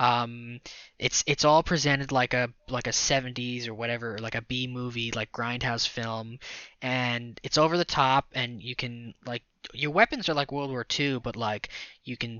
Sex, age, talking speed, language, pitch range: male, 10-29, 185 wpm, English, 120-140 Hz